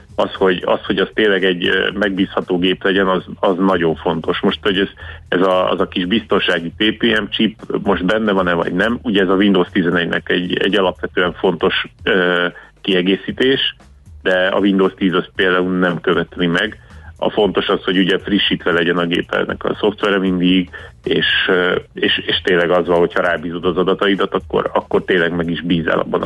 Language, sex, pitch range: Hungarian, male, 85-100 Hz